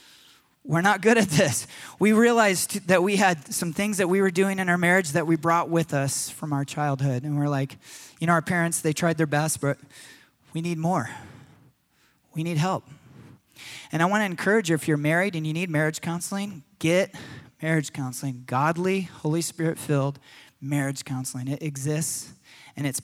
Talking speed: 180 wpm